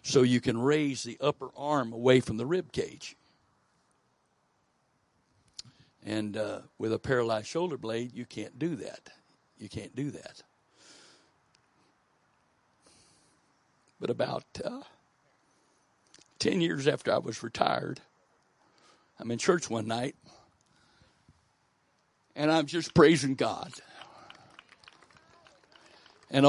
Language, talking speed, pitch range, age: English, 105 wpm, 115-155 Hz, 60-79